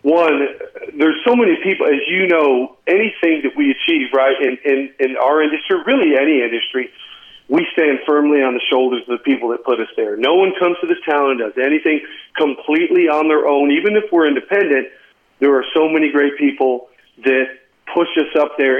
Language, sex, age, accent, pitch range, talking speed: English, male, 40-59, American, 135-175 Hz, 200 wpm